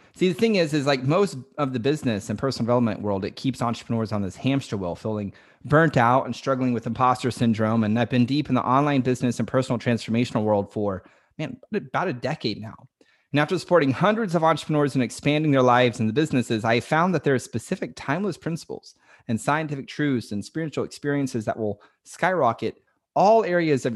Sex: male